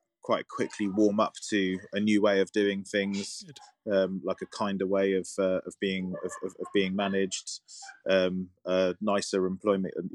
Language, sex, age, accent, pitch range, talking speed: English, male, 20-39, British, 90-105 Hz, 170 wpm